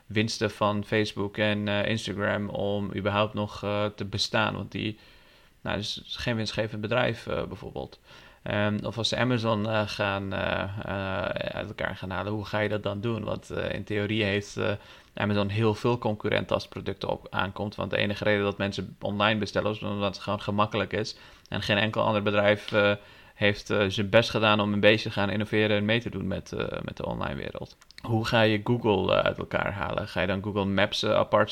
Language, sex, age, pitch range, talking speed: Dutch, male, 30-49, 105-115 Hz, 205 wpm